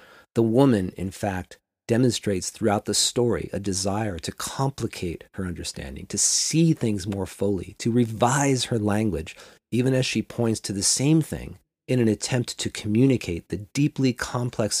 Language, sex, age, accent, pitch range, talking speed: English, male, 40-59, American, 95-125 Hz, 160 wpm